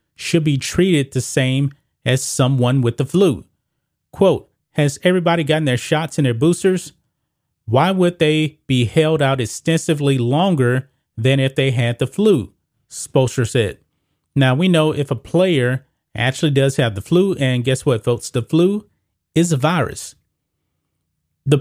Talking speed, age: 155 wpm, 30-49